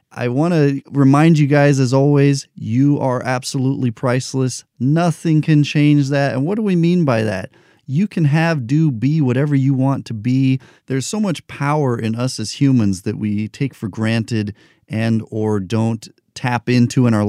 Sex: male